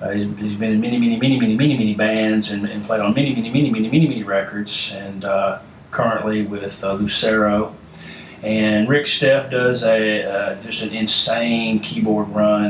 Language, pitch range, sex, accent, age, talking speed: English, 105-125 Hz, male, American, 40-59, 190 wpm